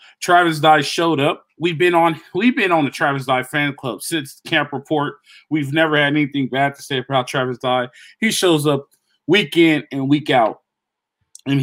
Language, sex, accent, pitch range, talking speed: English, male, American, 140-175 Hz, 185 wpm